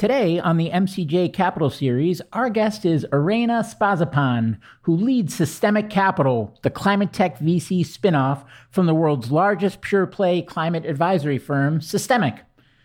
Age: 50-69